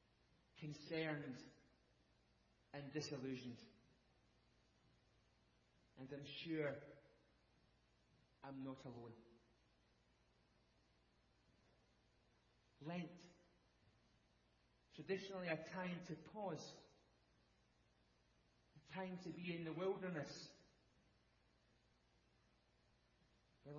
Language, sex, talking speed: English, male, 60 wpm